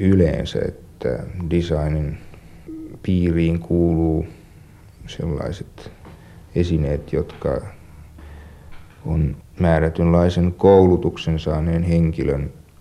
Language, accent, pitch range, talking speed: Finnish, native, 80-90 Hz, 60 wpm